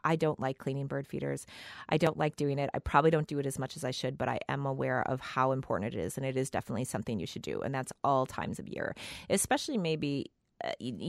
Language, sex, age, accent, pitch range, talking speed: English, female, 30-49, American, 135-165 Hz, 250 wpm